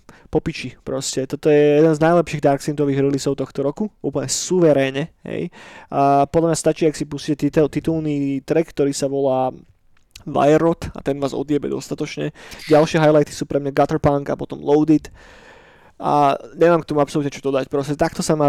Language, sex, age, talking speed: Slovak, male, 20-39, 175 wpm